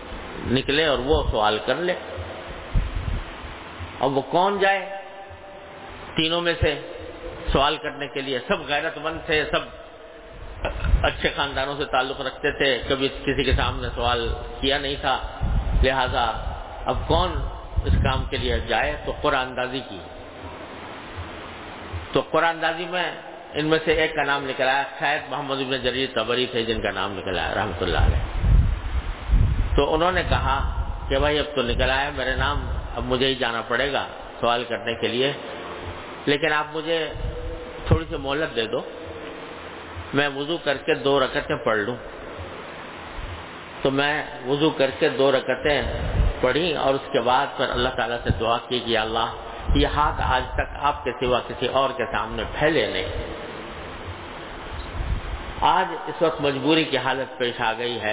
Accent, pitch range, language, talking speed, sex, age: Indian, 115-150 Hz, English, 140 wpm, male, 50-69